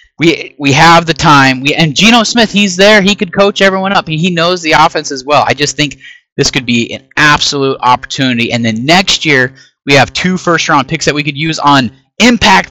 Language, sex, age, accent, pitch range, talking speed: English, male, 30-49, American, 125-170 Hz, 220 wpm